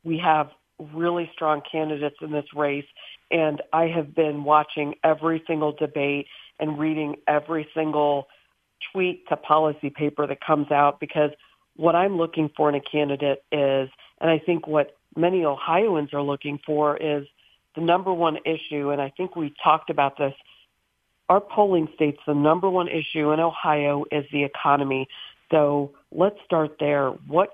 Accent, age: American, 40-59